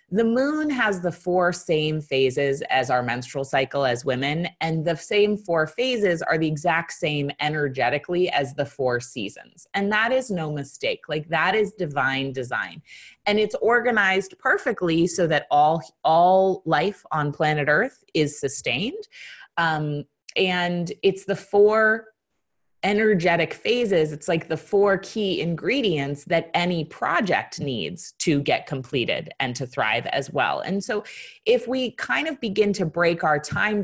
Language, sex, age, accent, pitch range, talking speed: English, female, 30-49, American, 145-195 Hz, 155 wpm